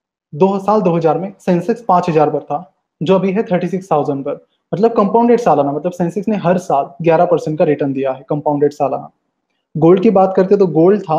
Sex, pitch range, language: male, 160-190 Hz, Hindi